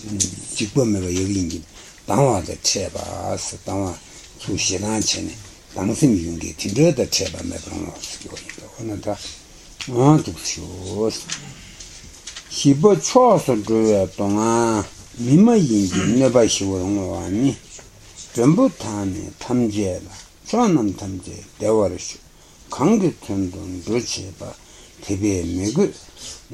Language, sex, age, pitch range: Italian, male, 60-79, 95-120 Hz